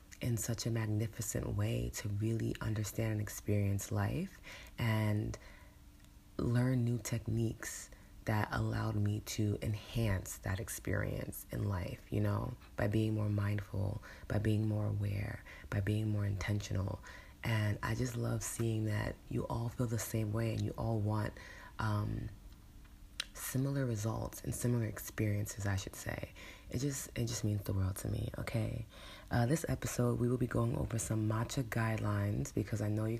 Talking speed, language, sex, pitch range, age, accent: 155 wpm, English, female, 105-120 Hz, 30-49, American